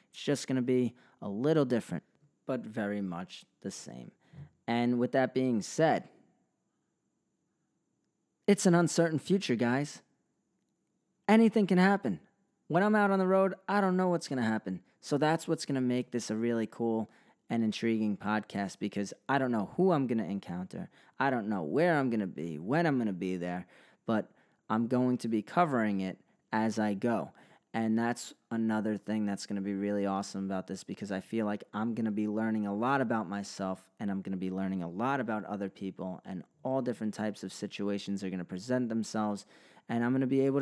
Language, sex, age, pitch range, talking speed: English, male, 30-49, 105-135 Hz, 205 wpm